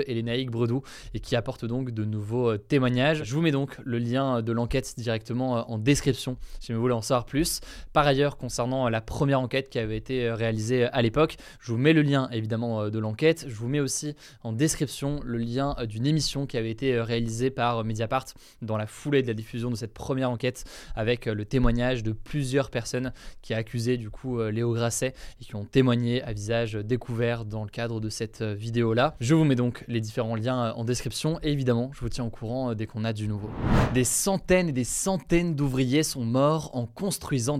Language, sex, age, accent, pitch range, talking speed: French, male, 20-39, French, 115-150 Hz, 205 wpm